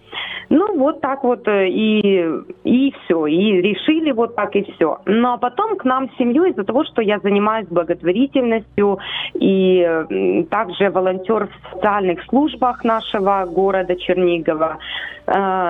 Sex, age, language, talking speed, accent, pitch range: female, 30-49, Ukrainian, 135 wpm, native, 185-250 Hz